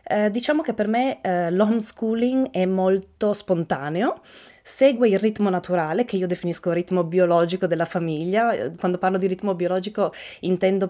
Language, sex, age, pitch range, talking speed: Italian, female, 20-39, 180-230 Hz, 155 wpm